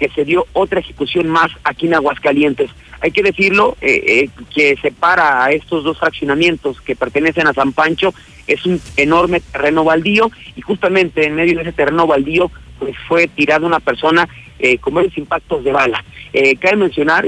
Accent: Mexican